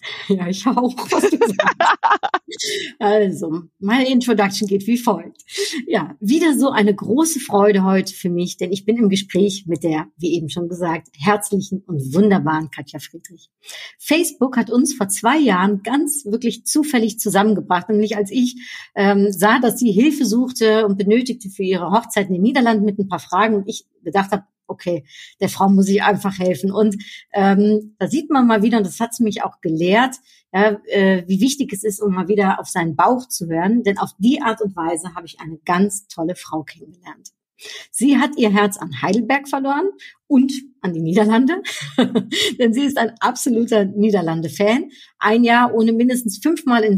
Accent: German